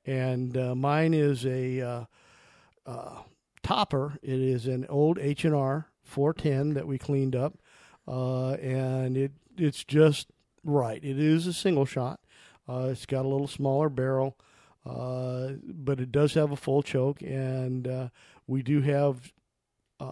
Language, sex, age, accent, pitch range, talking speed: English, male, 50-69, American, 130-145 Hz, 150 wpm